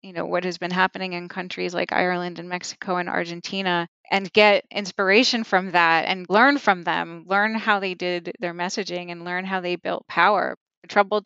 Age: 30-49